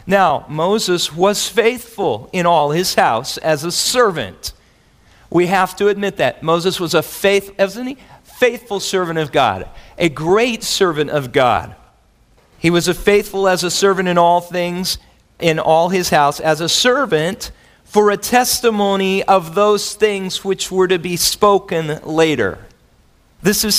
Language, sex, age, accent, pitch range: Korean, male, 40-59, American, 160-210 Hz